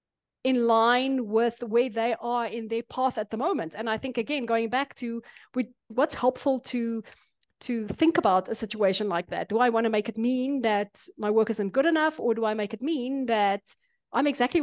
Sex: female